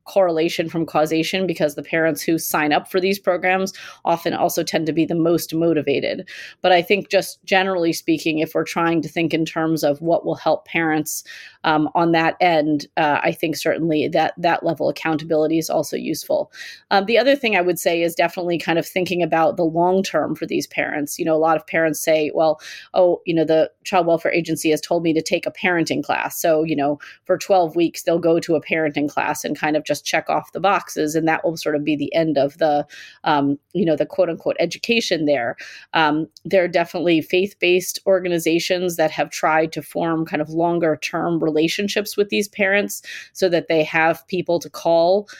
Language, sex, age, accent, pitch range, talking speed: English, female, 30-49, American, 155-180 Hz, 210 wpm